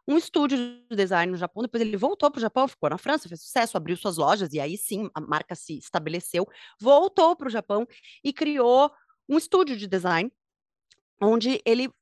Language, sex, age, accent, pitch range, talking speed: Portuguese, female, 20-39, Brazilian, 180-250 Hz, 195 wpm